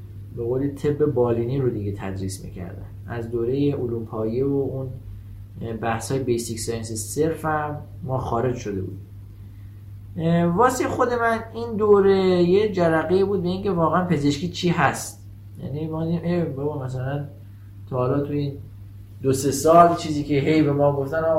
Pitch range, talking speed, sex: 110-155 Hz, 150 wpm, male